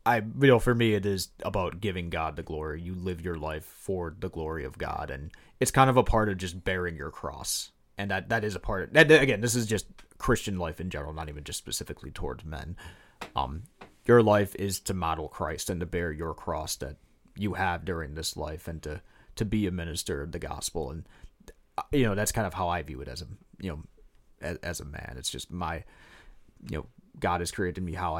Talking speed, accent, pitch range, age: 230 wpm, American, 85-105 Hz, 30-49